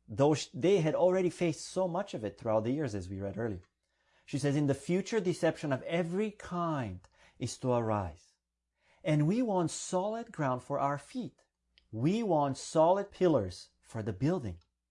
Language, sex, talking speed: English, male, 175 wpm